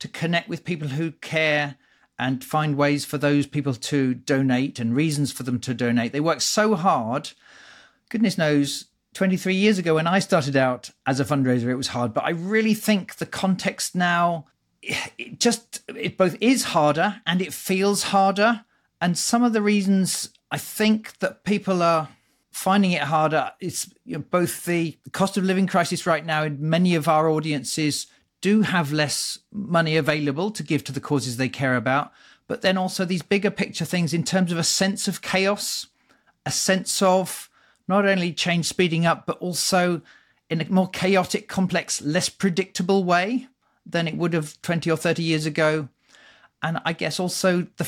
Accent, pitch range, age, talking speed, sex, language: British, 150-190 Hz, 40-59, 180 wpm, male, English